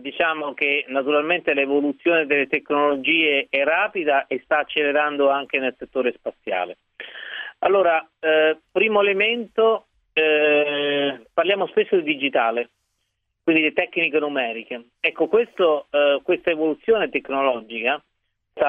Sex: male